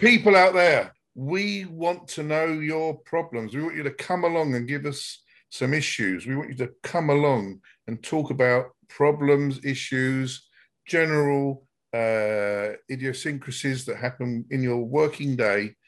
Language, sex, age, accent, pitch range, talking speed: English, male, 50-69, British, 120-150 Hz, 150 wpm